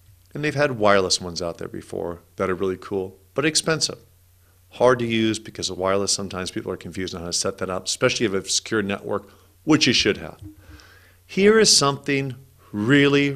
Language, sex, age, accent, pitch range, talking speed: English, male, 40-59, American, 95-150 Hz, 200 wpm